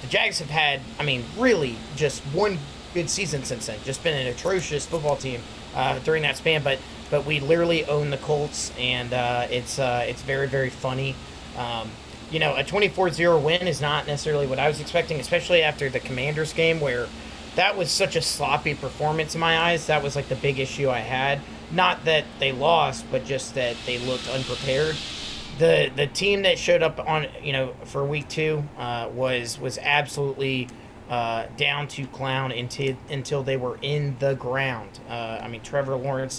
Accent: American